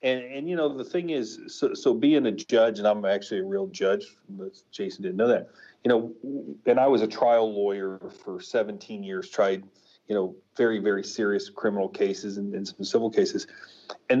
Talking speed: 200 wpm